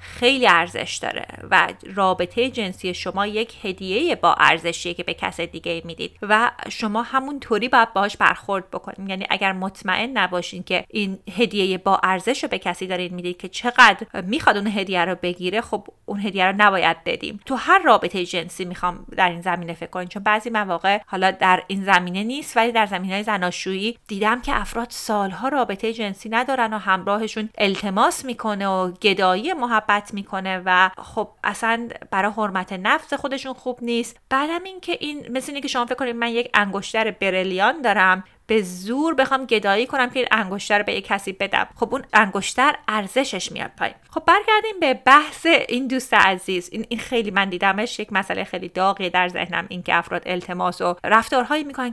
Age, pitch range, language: 30-49, 190-245 Hz, Persian